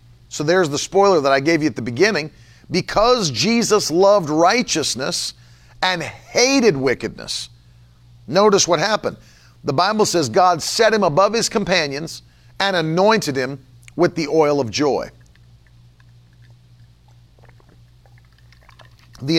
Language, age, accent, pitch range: English, 50-69, American, 120-190 Hz